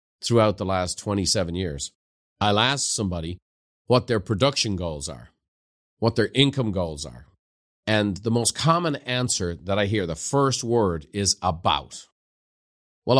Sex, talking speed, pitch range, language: male, 145 wpm, 95-125 Hz, English